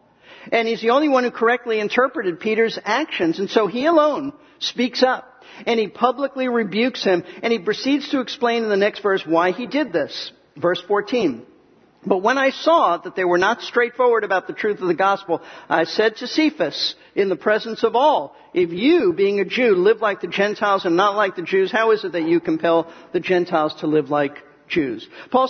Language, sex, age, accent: English, male, 50-69, American